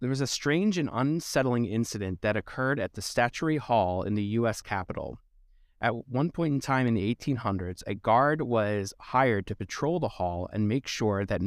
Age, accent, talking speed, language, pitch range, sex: 30-49, American, 195 wpm, English, 100-130 Hz, male